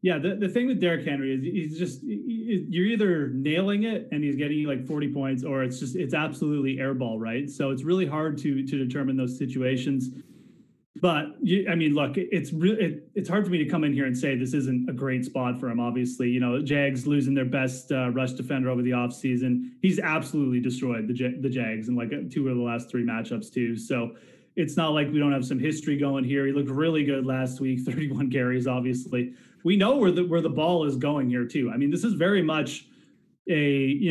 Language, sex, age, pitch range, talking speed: English, male, 30-49, 130-165 Hz, 230 wpm